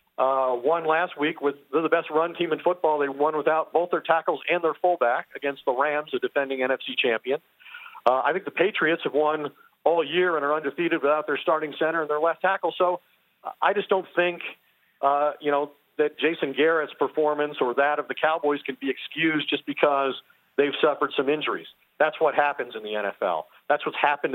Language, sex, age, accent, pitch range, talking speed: English, male, 50-69, American, 145-175 Hz, 205 wpm